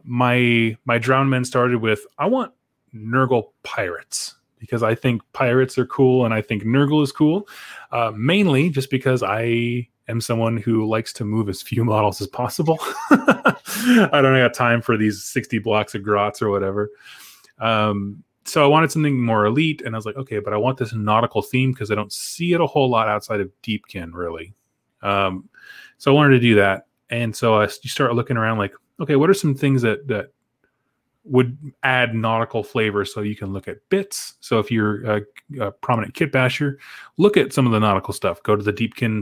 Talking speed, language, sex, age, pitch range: 200 wpm, English, male, 20-39, 110-135 Hz